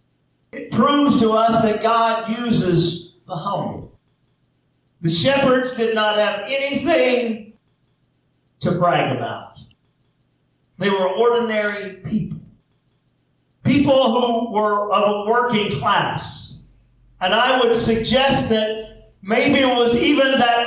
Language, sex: English, male